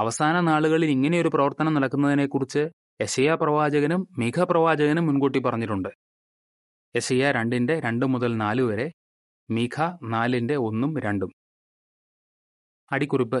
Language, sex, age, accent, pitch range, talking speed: Malayalam, male, 20-39, native, 115-150 Hz, 100 wpm